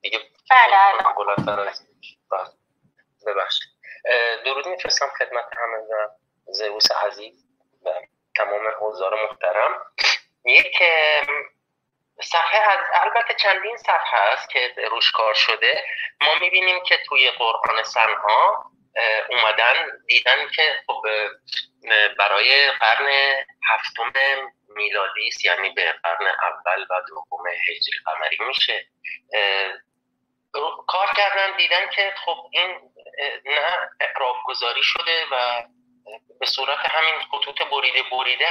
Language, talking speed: Persian, 100 wpm